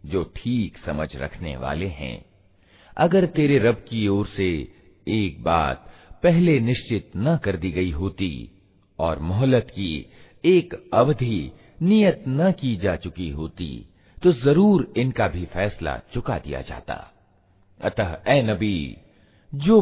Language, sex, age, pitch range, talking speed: Hindi, male, 50-69, 85-130 Hz, 135 wpm